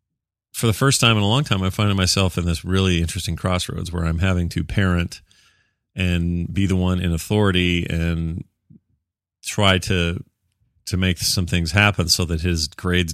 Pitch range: 85-105 Hz